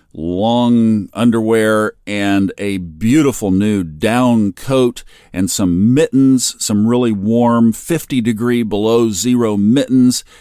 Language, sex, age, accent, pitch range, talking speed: English, male, 50-69, American, 100-125 Hz, 110 wpm